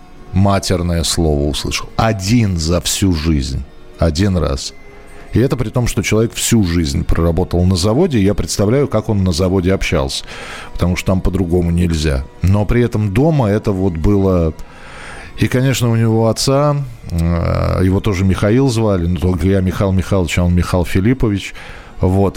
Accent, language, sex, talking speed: native, Russian, male, 155 wpm